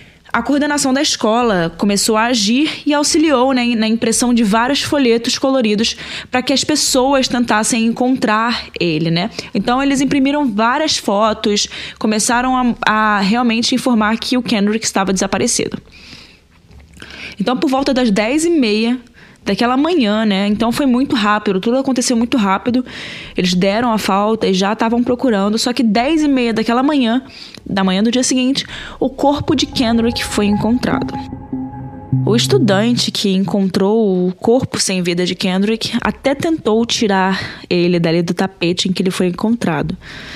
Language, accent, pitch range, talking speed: Portuguese, Brazilian, 195-255 Hz, 155 wpm